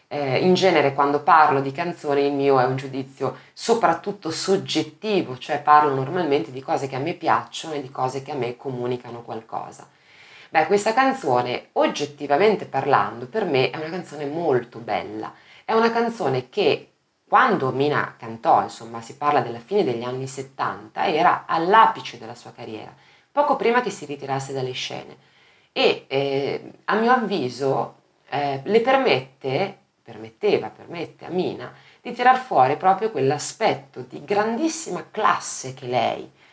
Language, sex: Italian, female